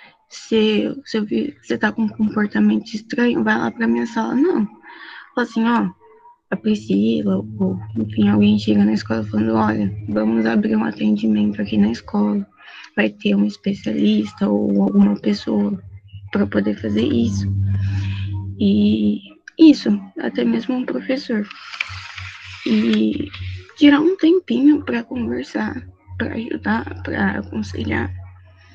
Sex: female